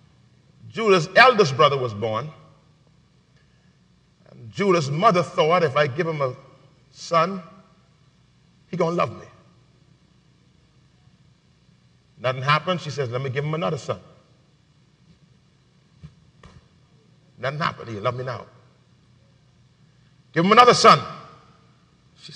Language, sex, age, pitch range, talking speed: English, male, 40-59, 115-155 Hz, 110 wpm